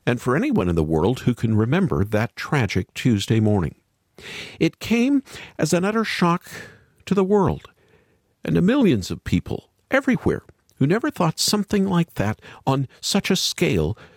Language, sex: English, male